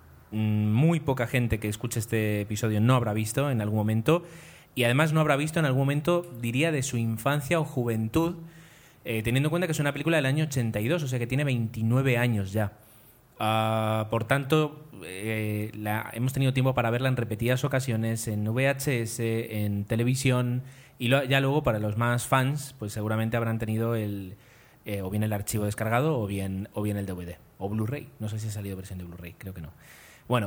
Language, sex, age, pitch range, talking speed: Spanish, male, 20-39, 110-135 Hz, 200 wpm